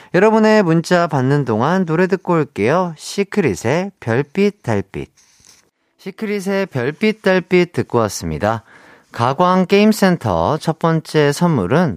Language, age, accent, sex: Korean, 40-59, native, male